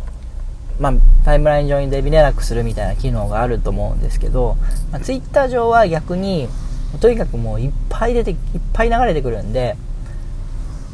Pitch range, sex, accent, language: 115-160 Hz, male, native, Japanese